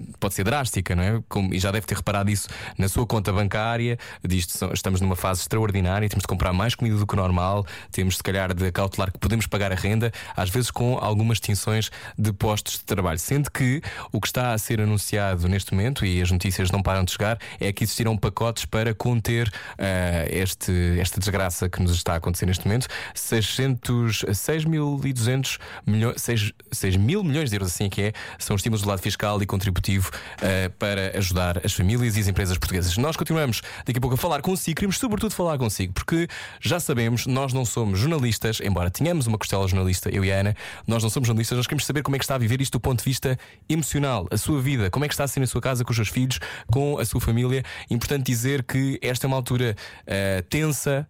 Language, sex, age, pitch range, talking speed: Portuguese, male, 20-39, 95-125 Hz, 220 wpm